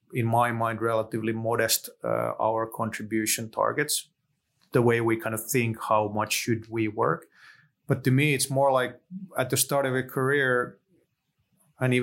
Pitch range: 120-150 Hz